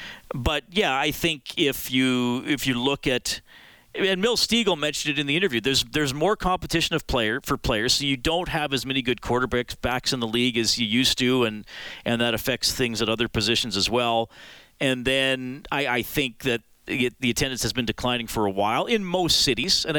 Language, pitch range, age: English, 120-150 Hz, 40-59